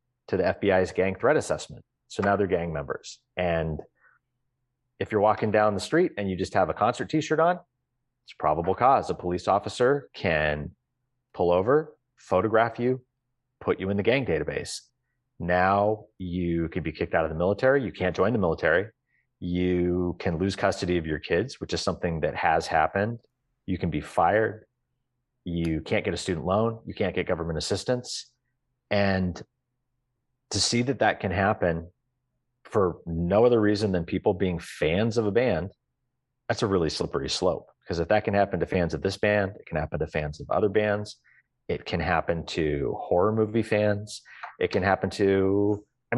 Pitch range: 90-125 Hz